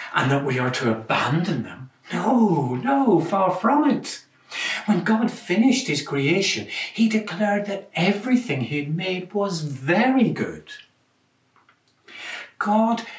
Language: English